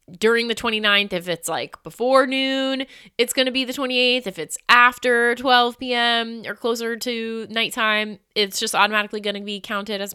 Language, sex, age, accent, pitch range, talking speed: English, female, 20-39, American, 175-245 Hz, 185 wpm